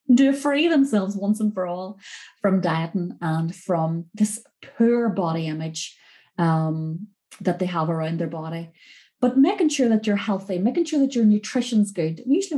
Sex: female